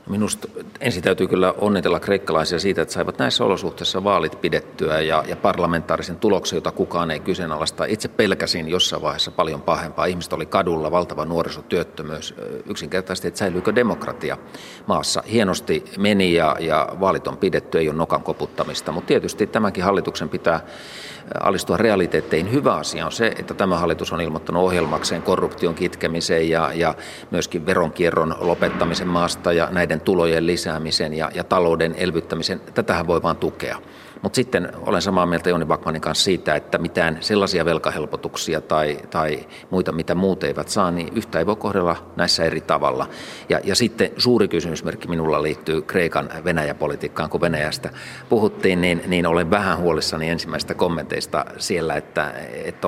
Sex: male